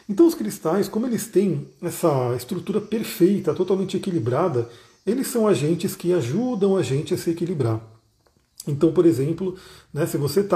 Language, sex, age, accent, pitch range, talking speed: Portuguese, male, 40-59, Brazilian, 150-185 Hz, 160 wpm